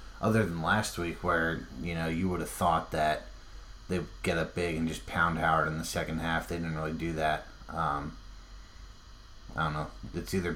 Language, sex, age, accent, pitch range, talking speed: English, male, 30-49, American, 80-90 Hz, 200 wpm